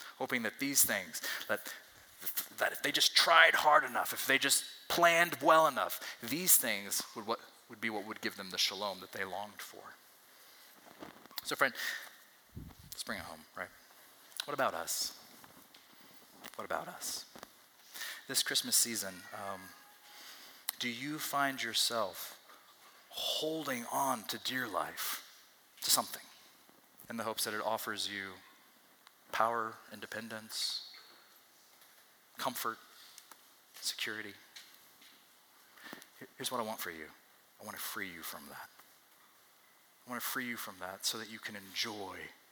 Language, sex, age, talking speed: English, male, 30-49, 140 wpm